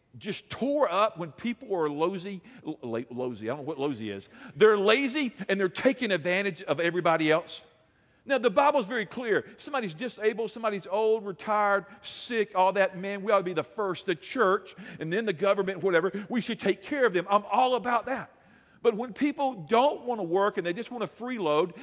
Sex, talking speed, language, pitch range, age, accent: male, 205 wpm, English, 165-230 Hz, 50-69, American